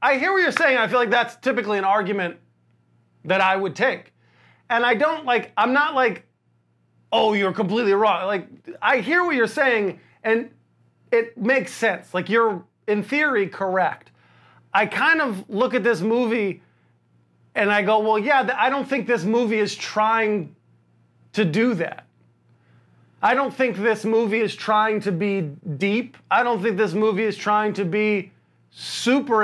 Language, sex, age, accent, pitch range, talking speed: English, male, 30-49, American, 190-250 Hz, 175 wpm